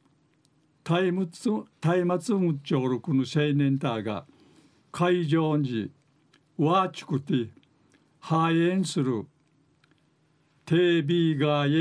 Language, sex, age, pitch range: Japanese, male, 60-79, 145-165 Hz